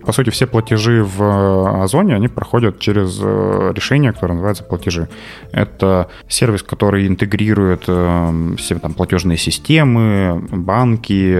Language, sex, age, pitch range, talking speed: Russian, male, 20-39, 90-110 Hz, 110 wpm